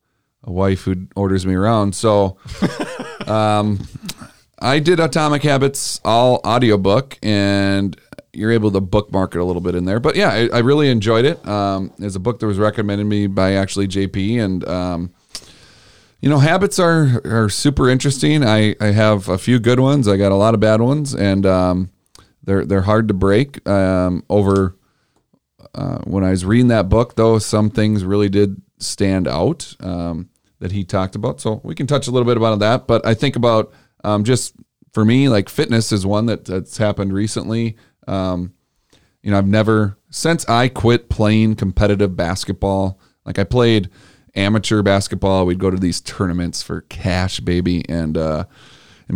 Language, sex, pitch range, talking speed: English, male, 95-115 Hz, 180 wpm